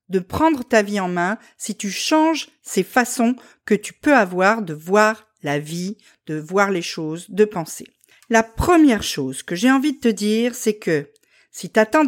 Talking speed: 195 wpm